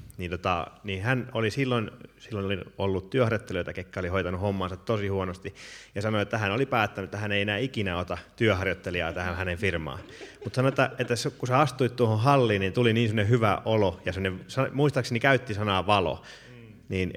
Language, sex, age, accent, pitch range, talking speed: Finnish, male, 30-49, native, 95-125 Hz, 185 wpm